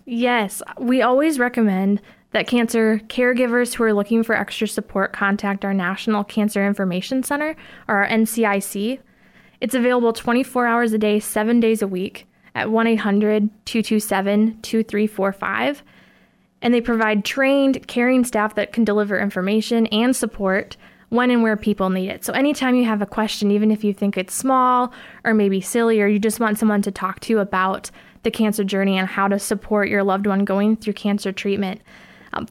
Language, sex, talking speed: English, female, 170 wpm